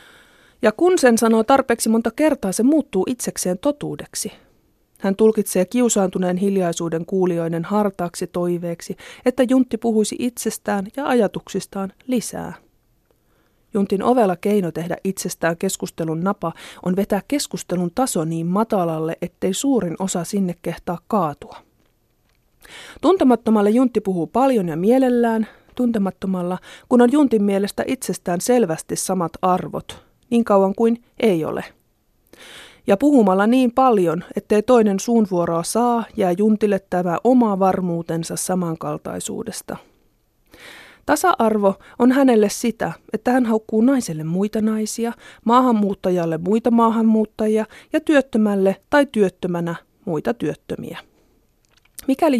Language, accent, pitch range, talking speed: Finnish, native, 185-235 Hz, 110 wpm